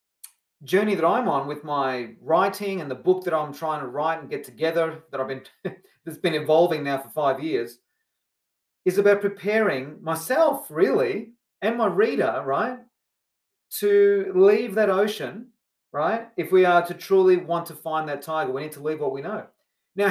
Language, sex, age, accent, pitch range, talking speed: English, male, 30-49, Australian, 145-195 Hz, 180 wpm